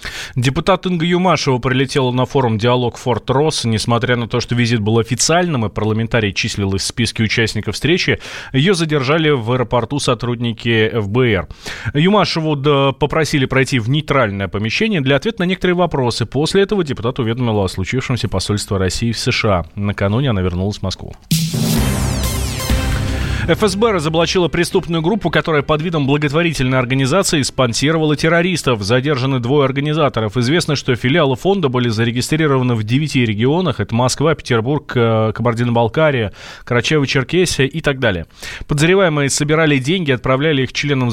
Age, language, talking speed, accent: 30-49, Russian, 135 wpm, native